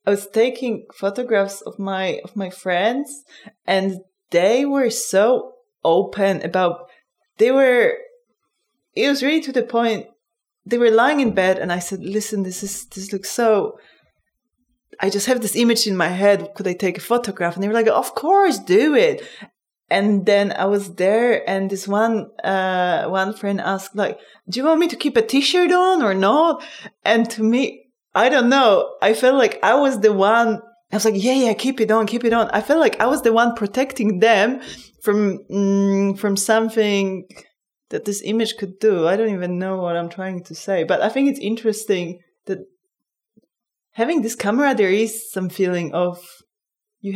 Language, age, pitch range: Dutch, 20-39, 195-240 Hz